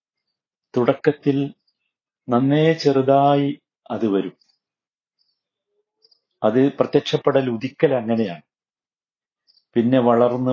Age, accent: 50-69, native